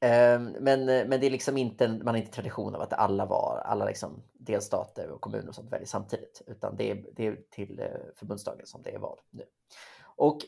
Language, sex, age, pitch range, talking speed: Swedish, male, 30-49, 115-175 Hz, 195 wpm